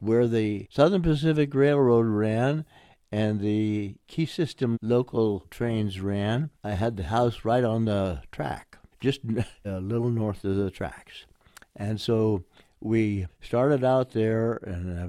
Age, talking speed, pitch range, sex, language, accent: 60-79, 145 wpm, 95-115 Hz, male, English, American